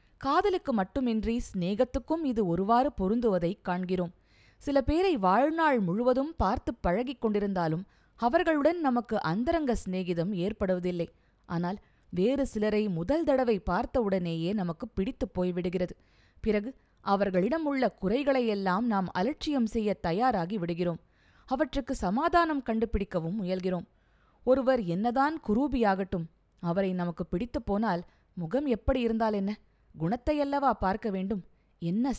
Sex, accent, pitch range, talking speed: female, native, 185-260 Hz, 105 wpm